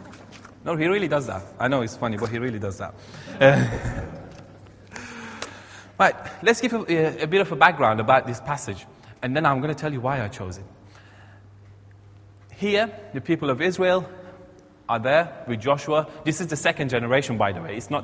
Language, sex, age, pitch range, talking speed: English, male, 30-49, 110-140 Hz, 190 wpm